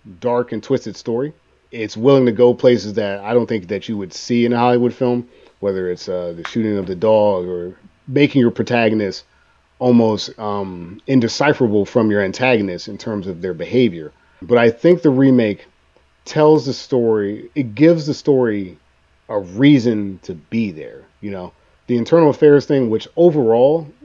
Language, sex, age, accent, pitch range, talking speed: English, male, 30-49, American, 105-130 Hz, 170 wpm